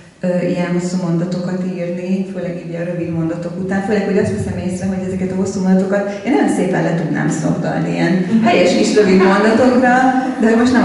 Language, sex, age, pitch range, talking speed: Hungarian, female, 30-49, 175-195 Hz, 190 wpm